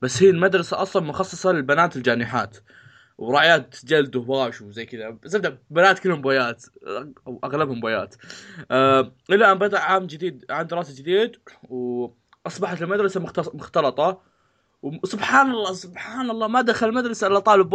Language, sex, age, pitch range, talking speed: Arabic, male, 20-39, 135-190 Hz, 140 wpm